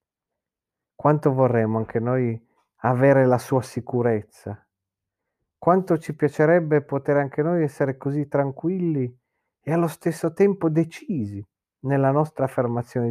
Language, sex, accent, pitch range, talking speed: Italian, male, native, 125-165 Hz, 115 wpm